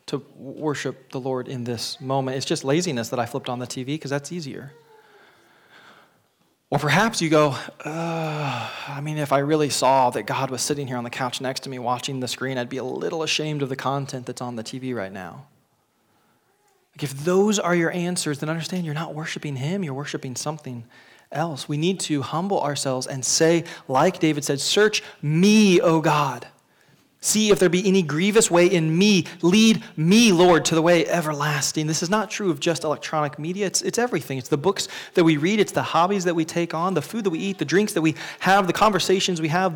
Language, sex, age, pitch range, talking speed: English, male, 20-39, 135-185 Hz, 210 wpm